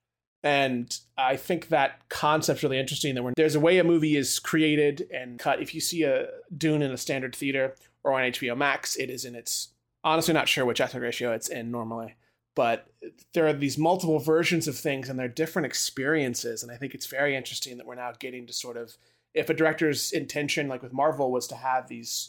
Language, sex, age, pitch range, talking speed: English, male, 30-49, 125-150 Hz, 215 wpm